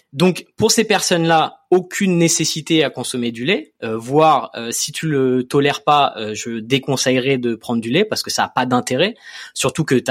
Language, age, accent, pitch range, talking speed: French, 20-39, French, 115-155 Hz, 200 wpm